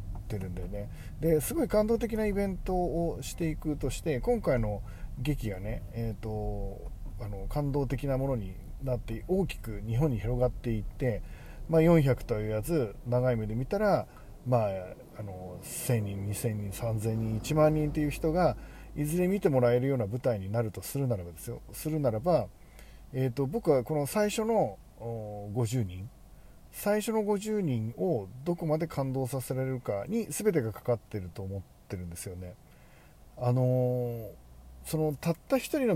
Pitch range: 110-160 Hz